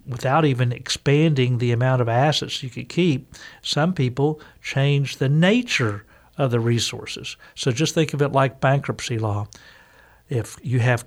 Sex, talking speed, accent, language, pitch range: male, 155 wpm, American, English, 120-155 Hz